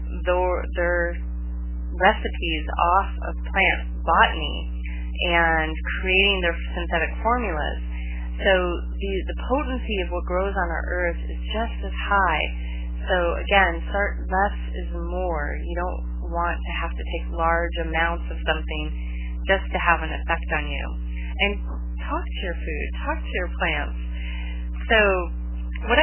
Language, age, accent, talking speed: English, 30-49, American, 140 wpm